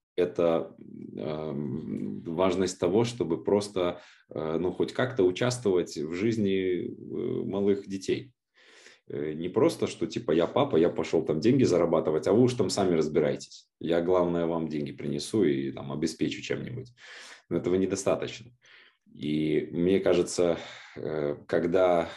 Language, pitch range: Russian, 80-100 Hz